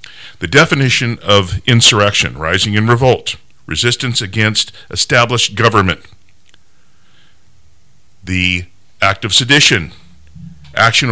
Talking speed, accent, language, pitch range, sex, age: 85 wpm, American, English, 90-115 Hz, male, 40-59